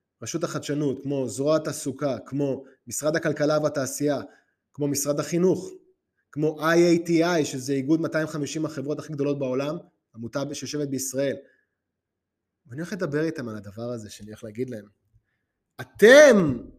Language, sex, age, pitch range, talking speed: Hebrew, male, 20-39, 135-185 Hz, 130 wpm